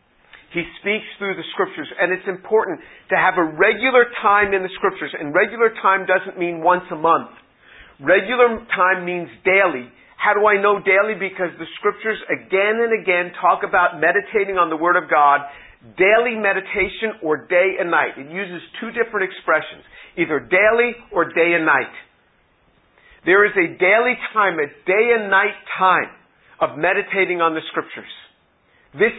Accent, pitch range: American, 175-220 Hz